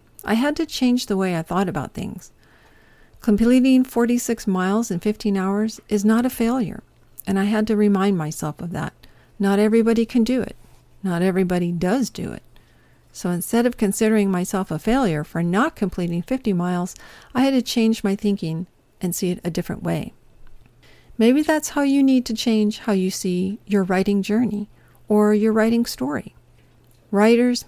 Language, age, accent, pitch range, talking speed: English, 50-69, American, 185-230 Hz, 175 wpm